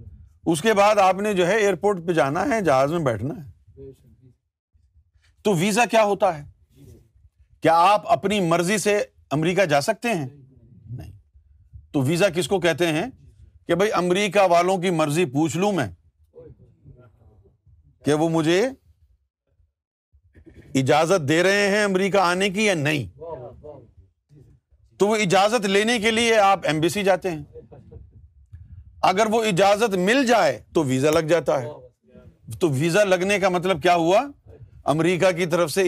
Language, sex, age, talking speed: Urdu, male, 50-69, 140 wpm